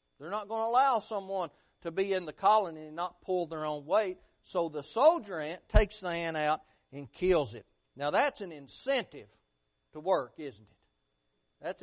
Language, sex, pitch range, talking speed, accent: English, male, 155-245 Hz, 190 wpm, American